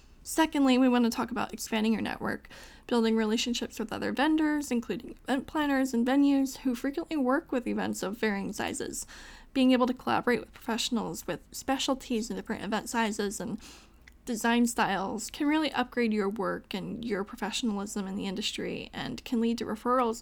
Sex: female